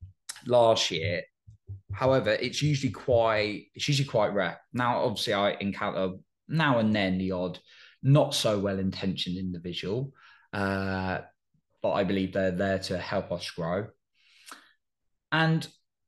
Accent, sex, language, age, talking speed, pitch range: British, male, English, 20-39, 130 wpm, 100-150 Hz